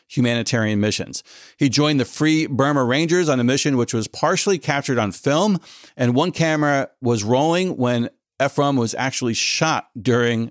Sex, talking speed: male, 160 wpm